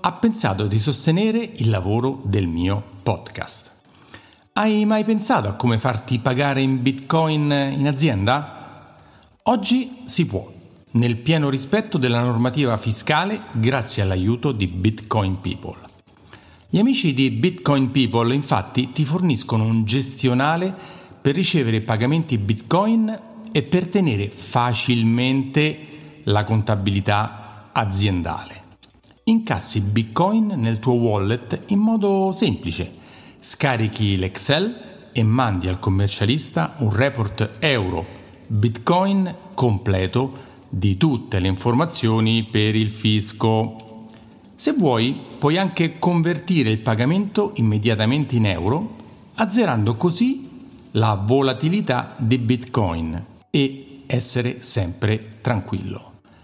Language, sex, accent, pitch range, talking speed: Italian, male, native, 110-160 Hz, 105 wpm